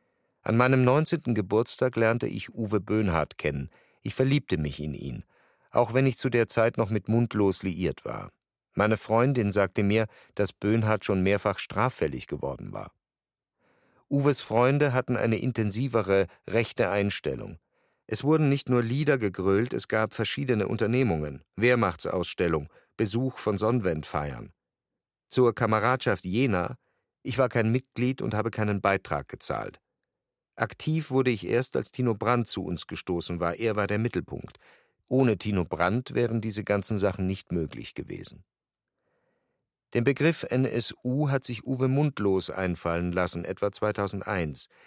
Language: German